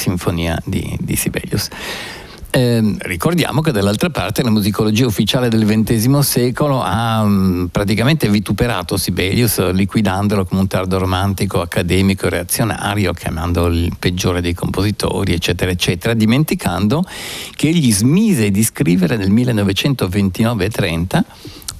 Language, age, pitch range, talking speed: Italian, 50-69, 95-115 Hz, 115 wpm